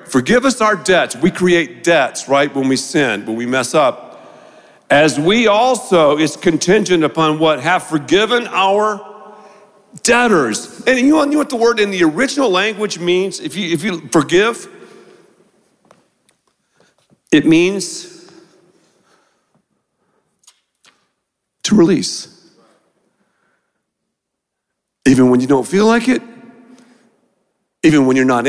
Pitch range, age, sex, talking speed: 160-255 Hz, 50-69, male, 120 wpm